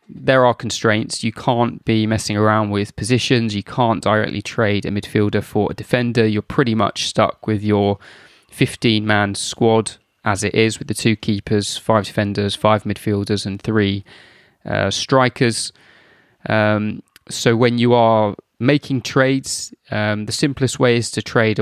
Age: 20-39